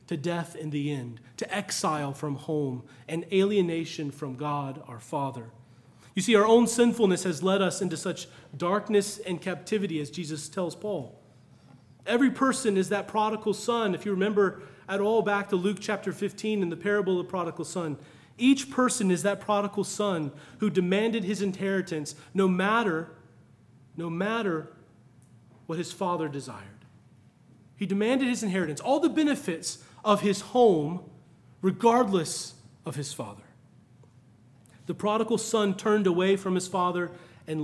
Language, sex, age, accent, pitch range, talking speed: English, male, 30-49, American, 150-215 Hz, 155 wpm